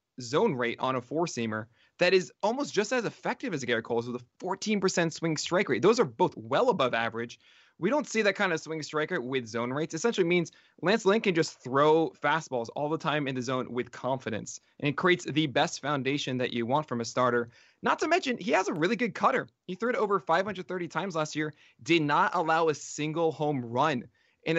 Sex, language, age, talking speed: male, English, 20-39, 220 wpm